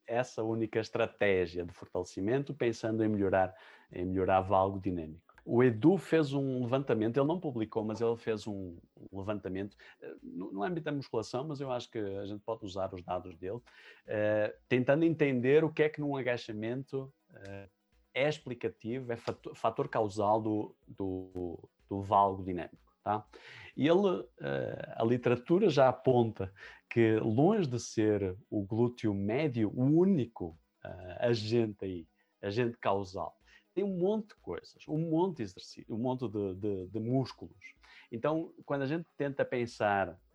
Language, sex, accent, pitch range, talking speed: Portuguese, male, Brazilian, 100-135 Hz, 155 wpm